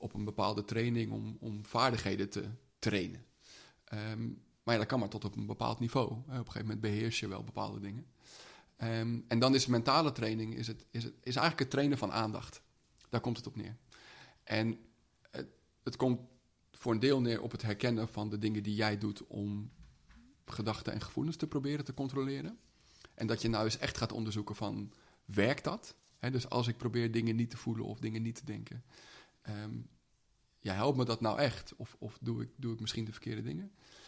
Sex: male